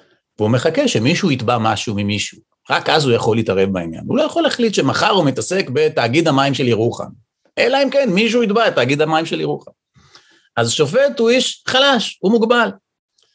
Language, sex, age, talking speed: Hebrew, male, 40-59, 175 wpm